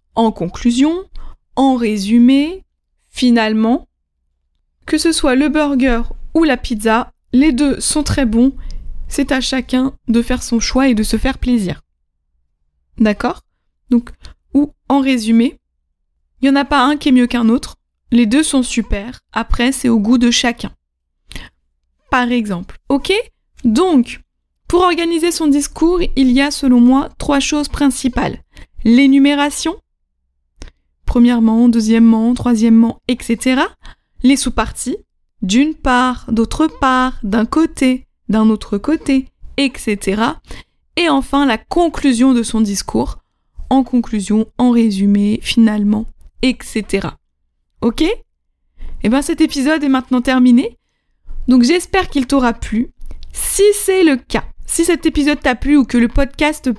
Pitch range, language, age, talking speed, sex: 225-280 Hz, French, 20-39, 135 wpm, female